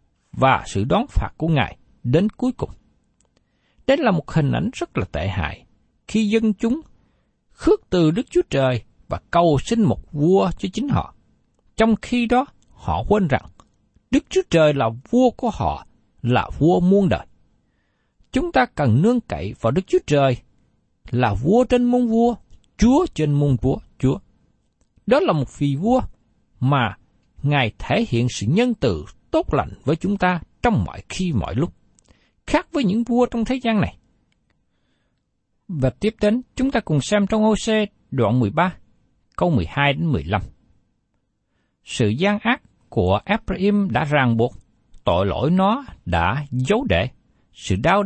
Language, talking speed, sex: Vietnamese, 165 wpm, male